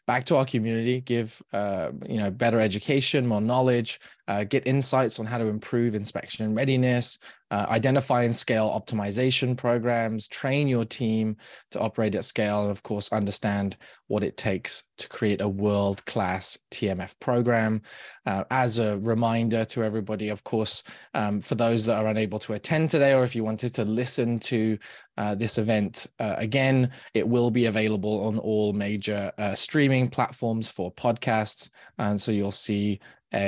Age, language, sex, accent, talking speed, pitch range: 20-39, English, male, British, 165 wpm, 105-125 Hz